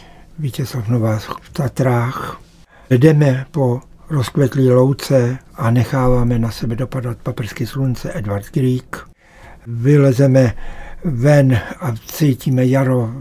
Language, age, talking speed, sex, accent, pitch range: Czech, 60-79, 100 wpm, male, native, 125-165 Hz